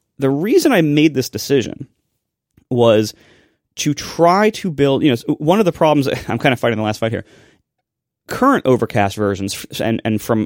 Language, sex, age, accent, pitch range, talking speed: English, male, 30-49, American, 110-140 Hz, 180 wpm